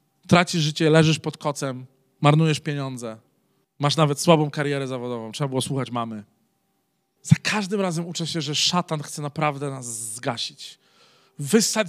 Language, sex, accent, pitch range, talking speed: Polish, male, native, 130-175 Hz, 140 wpm